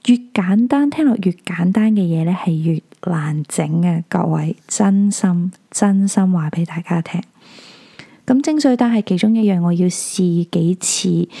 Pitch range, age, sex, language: 175-230 Hz, 20-39, female, Chinese